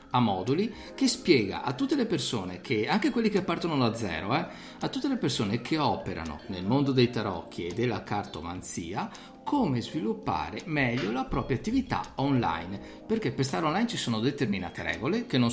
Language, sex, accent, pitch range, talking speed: Italian, male, native, 115-145 Hz, 175 wpm